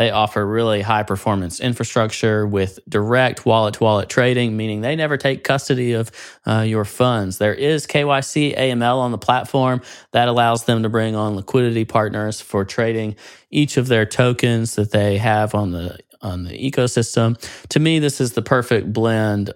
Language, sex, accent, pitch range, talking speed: English, male, American, 105-125 Hz, 165 wpm